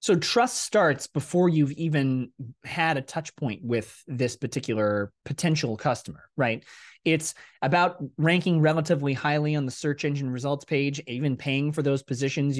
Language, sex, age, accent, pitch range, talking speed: English, male, 20-39, American, 125-160 Hz, 150 wpm